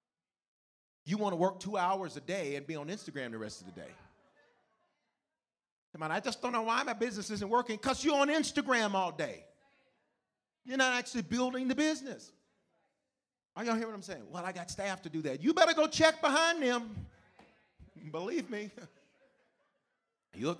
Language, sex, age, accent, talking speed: English, male, 40-59, American, 180 wpm